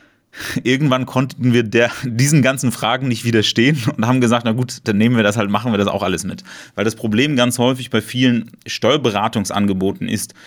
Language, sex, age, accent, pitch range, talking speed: German, male, 30-49, German, 110-125 Hz, 190 wpm